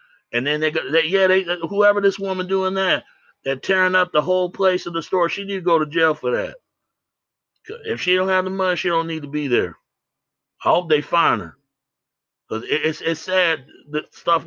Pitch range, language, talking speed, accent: 140-185 Hz, English, 220 wpm, American